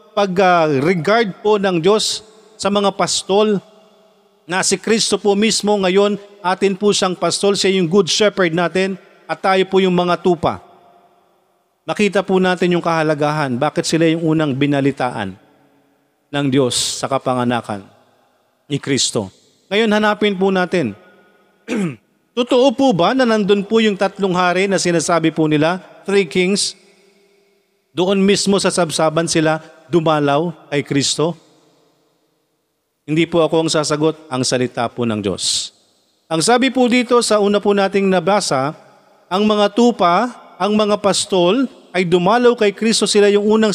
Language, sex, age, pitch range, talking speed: Filipino, male, 50-69, 160-210 Hz, 145 wpm